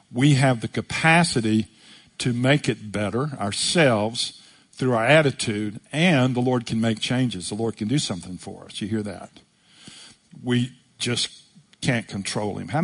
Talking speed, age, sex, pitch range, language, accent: 160 wpm, 50-69, male, 115-150 Hz, English, American